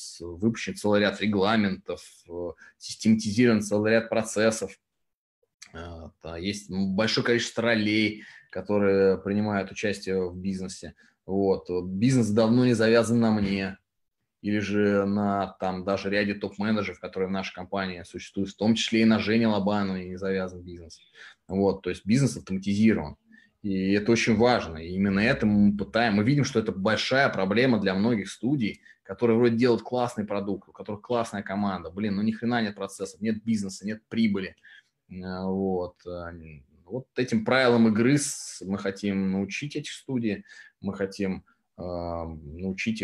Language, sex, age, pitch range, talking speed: Russian, male, 20-39, 95-115 Hz, 140 wpm